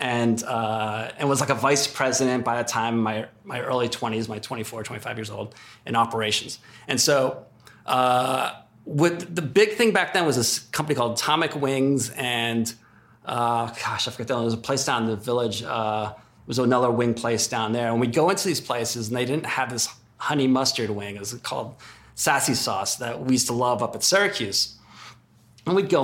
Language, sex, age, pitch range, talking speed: English, male, 30-49, 115-135 Hz, 205 wpm